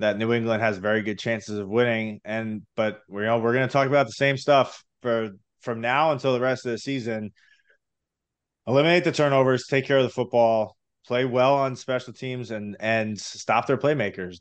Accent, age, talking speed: American, 20-39, 205 wpm